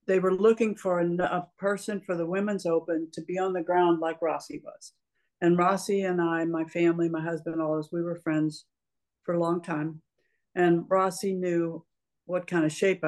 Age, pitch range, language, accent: 60-79, 165-185 Hz, English, American